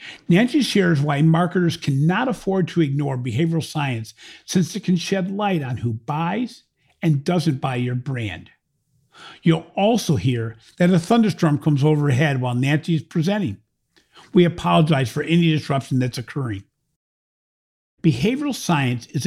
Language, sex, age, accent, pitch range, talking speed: English, male, 50-69, American, 135-195 Hz, 140 wpm